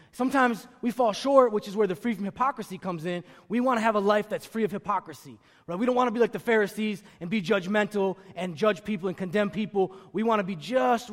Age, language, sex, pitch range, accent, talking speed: 20-39, English, male, 195-235 Hz, American, 250 wpm